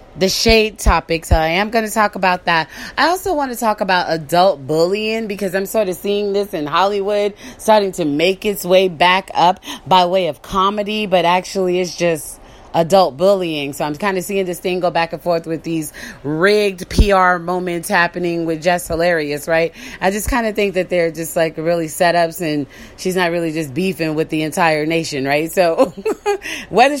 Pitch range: 170-215 Hz